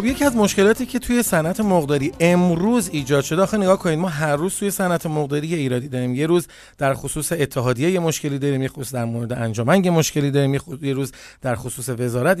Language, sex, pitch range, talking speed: Persian, male, 140-185 Hz, 205 wpm